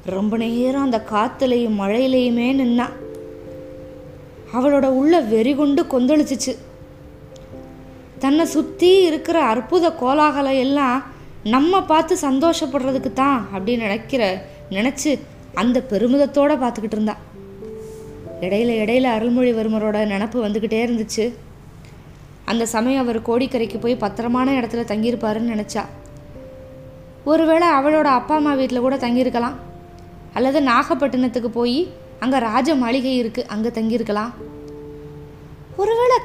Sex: female